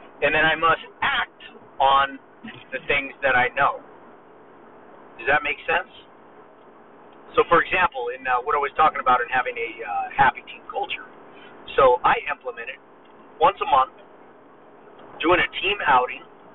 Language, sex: English, male